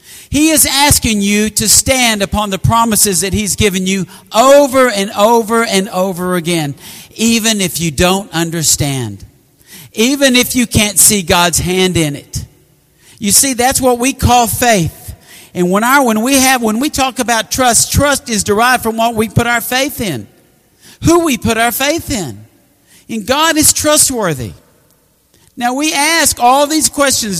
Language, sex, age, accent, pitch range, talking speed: English, male, 50-69, American, 200-275 Hz, 170 wpm